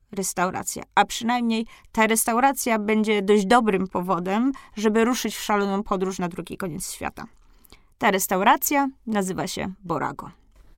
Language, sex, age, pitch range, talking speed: Polish, female, 20-39, 200-240 Hz, 130 wpm